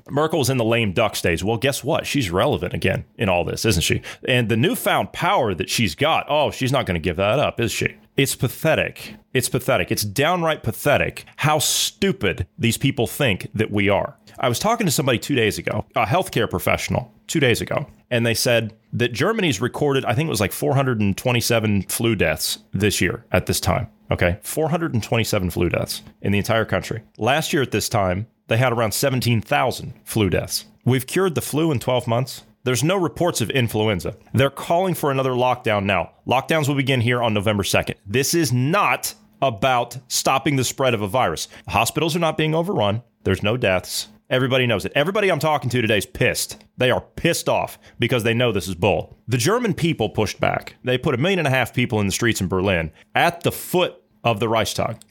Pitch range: 110-140 Hz